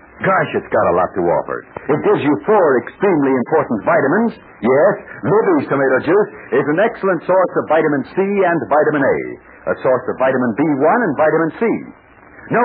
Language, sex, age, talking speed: English, male, 60-79, 175 wpm